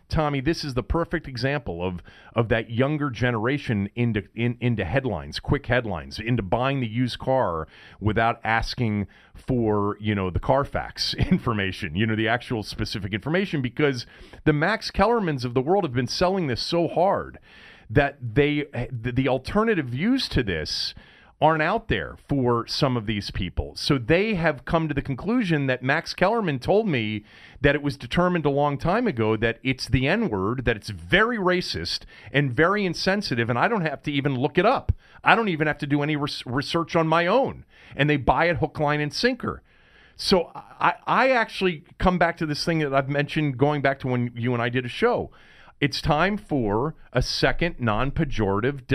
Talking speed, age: 185 wpm, 40-59